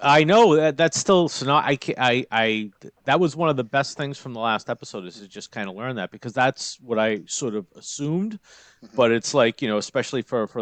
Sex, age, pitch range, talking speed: male, 40-59, 105-130 Hz, 250 wpm